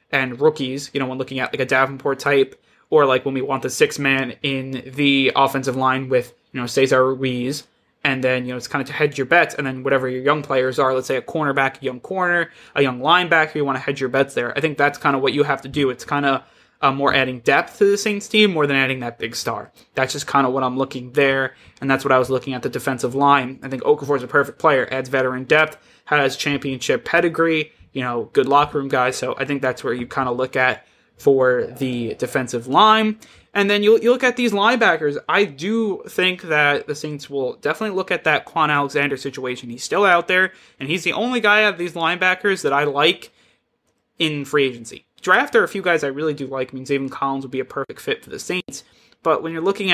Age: 20-39